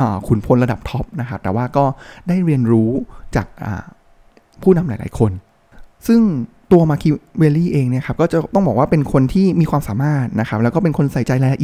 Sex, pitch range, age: male, 115-160 Hz, 20-39